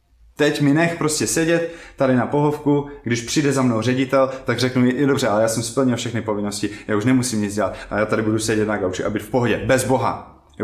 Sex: male